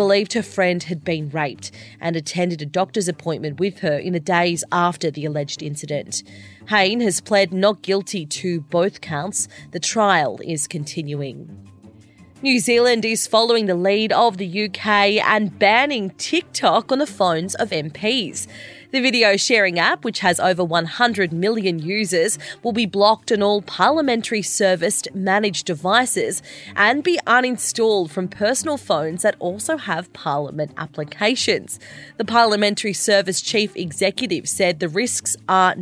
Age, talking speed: 30-49, 145 wpm